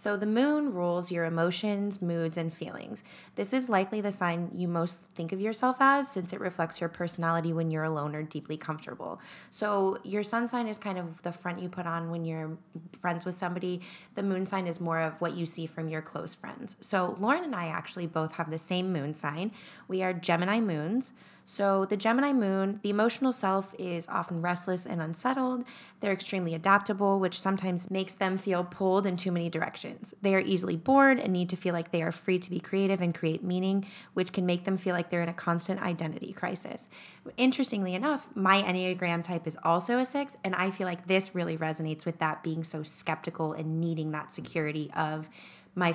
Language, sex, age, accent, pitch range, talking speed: English, female, 10-29, American, 165-195 Hz, 205 wpm